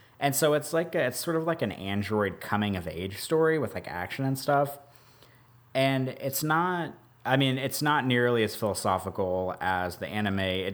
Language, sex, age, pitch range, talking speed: English, male, 30-49, 95-130 Hz, 185 wpm